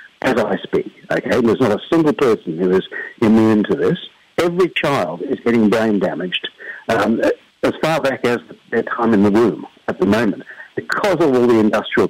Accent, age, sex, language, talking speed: British, 60-79, male, English, 190 wpm